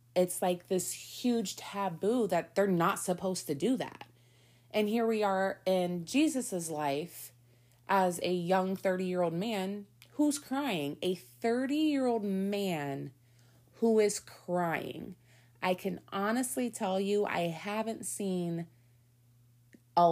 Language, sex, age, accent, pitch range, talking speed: English, female, 30-49, American, 155-200 Hz, 120 wpm